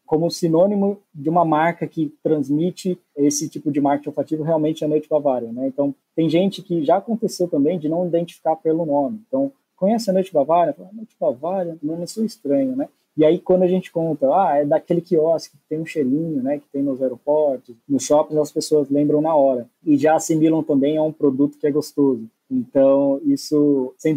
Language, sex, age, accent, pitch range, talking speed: Portuguese, male, 20-39, Brazilian, 145-180 Hz, 205 wpm